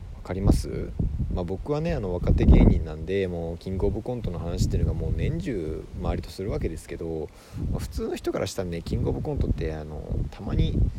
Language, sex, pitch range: Japanese, male, 85-110 Hz